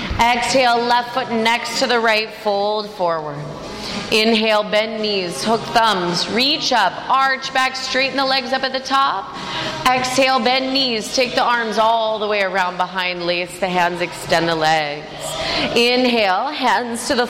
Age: 30-49